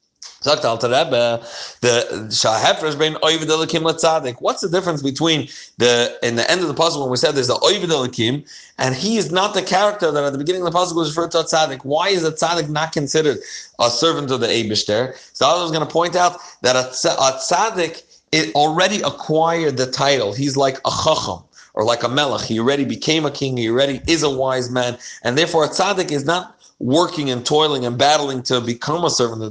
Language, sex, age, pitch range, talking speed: English, male, 40-59, 130-170 Hz, 195 wpm